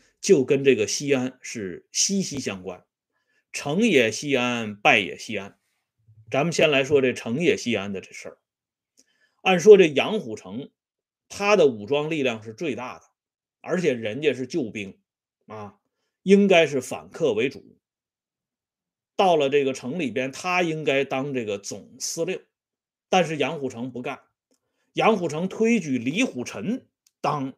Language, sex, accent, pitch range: Swedish, male, Chinese, 125-200 Hz